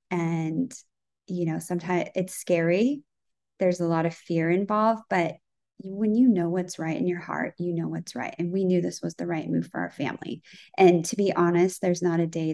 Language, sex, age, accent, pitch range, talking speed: English, female, 20-39, American, 165-180 Hz, 210 wpm